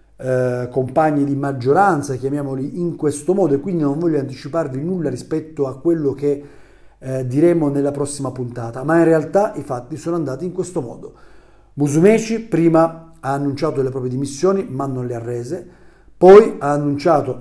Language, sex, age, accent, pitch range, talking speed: Italian, male, 40-59, native, 135-175 Hz, 160 wpm